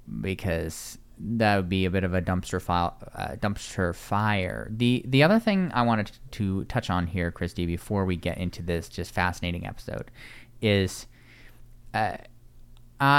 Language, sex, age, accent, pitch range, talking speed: English, male, 20-39, American, 100-120 Hz, 155 wpm